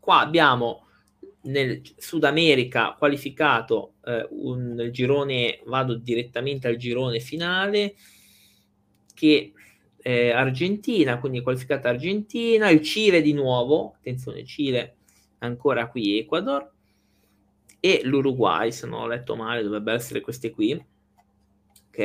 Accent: native